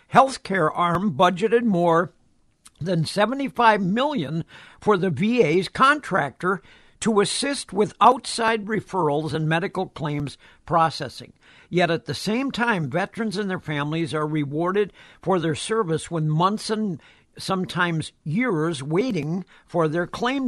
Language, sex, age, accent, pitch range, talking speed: English, male, 60-79, American, 160-210 Hz, 125 wpm